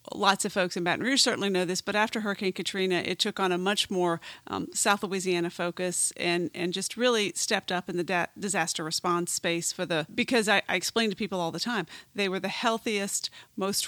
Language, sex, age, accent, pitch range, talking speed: English, female, 40-59, American, 175-205 Hz, 215 wpm